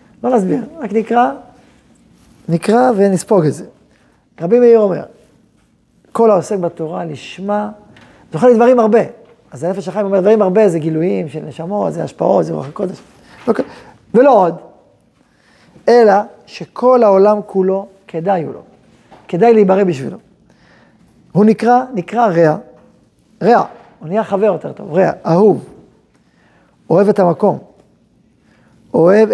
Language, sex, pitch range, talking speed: Hebrew, male, 180-220 Hz, 125 wpm